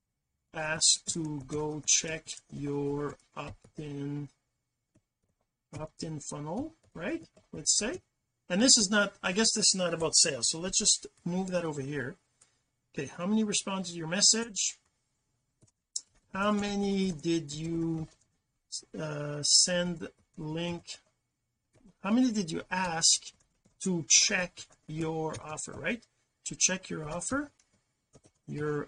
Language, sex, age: English, male, 40-59